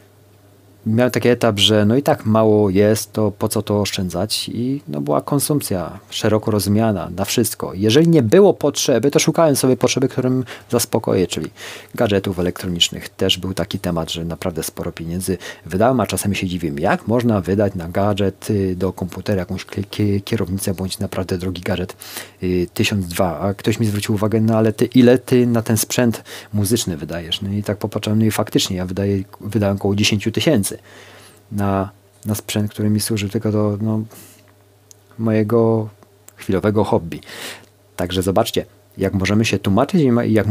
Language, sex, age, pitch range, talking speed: Polish, male, 40-59, 100-110 Hz, 165 wpm